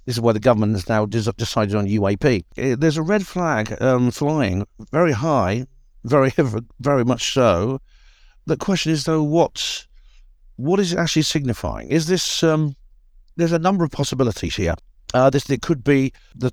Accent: British